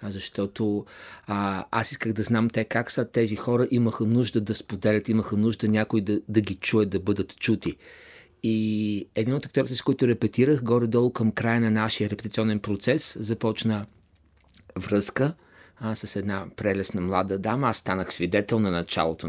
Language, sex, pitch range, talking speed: Bulgarian, male, 100-120 Hz, 160 wpm